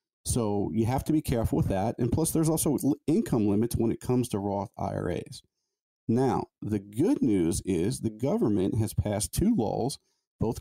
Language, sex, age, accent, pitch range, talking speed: English, male, 40-59, American, 105-125 Hz, 180 wpm